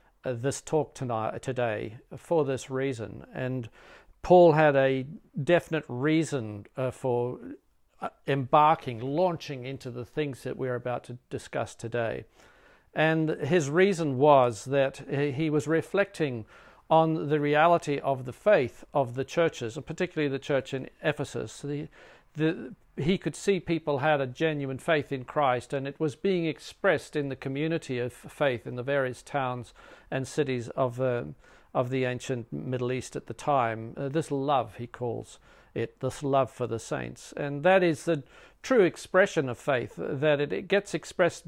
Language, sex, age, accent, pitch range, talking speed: English, male, 50-69, South African, 130-170 Hz, 160 wpm